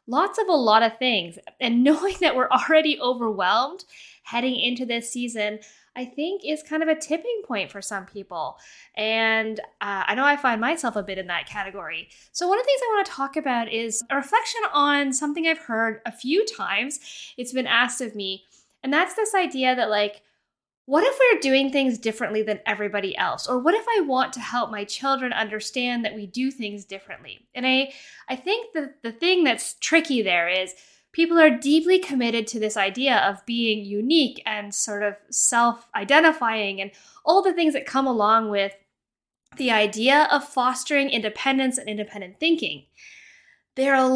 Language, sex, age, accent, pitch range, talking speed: English, female, 10-29, American, 215-300 Hz, 185 wpm